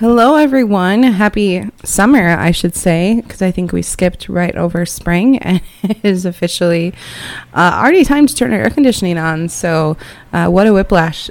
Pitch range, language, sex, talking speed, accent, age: 160-195 Hz, English, female, 175 wpm, American, 20-39